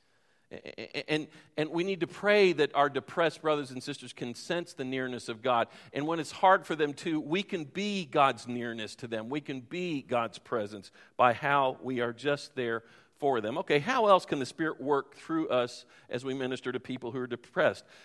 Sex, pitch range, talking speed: male, 130-180 Hz, 205 wpm